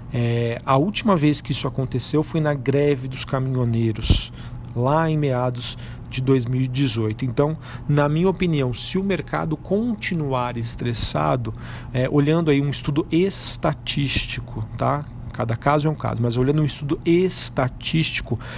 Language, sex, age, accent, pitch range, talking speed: Portuguese, male, 40-59, Brazilian, 120-145 Hz, 130 wpm